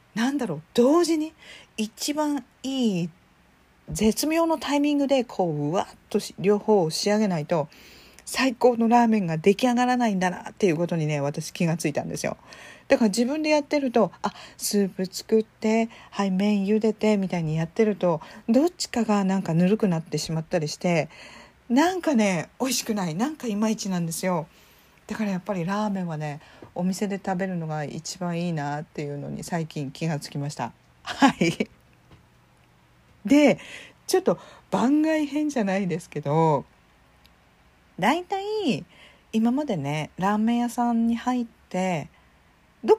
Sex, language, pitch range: female, Japanese, 170-260 Hz